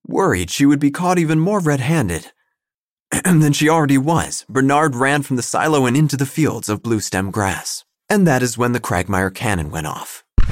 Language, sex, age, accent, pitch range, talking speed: English, male, 30-49, American, 100-135 Hz, 195 wpm